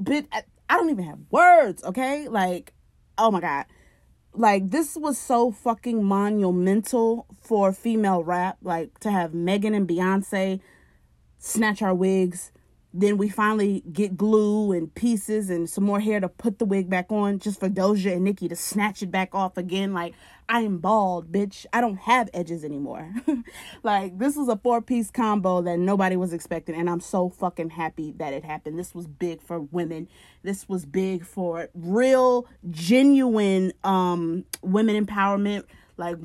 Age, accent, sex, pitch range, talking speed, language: 20-39, American, female, 170-210 Hz, 165 wpm, English